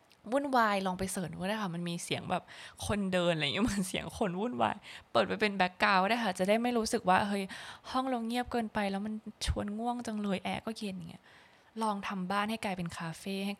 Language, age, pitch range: Thai, 20-39, 180-220 Hz